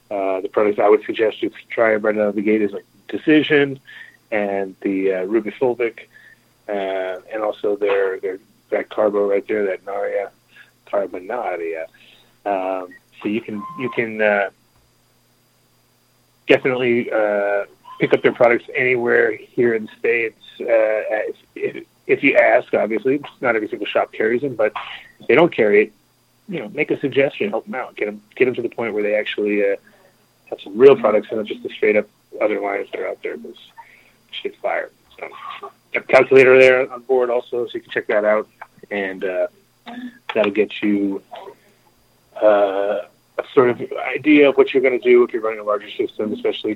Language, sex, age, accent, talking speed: English, male, 30-49, American, 185 wpm